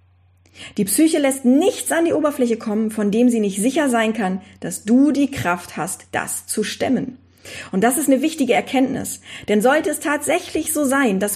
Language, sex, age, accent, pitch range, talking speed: German, female, 40-59, German, 195-275 Hz, 190 wpm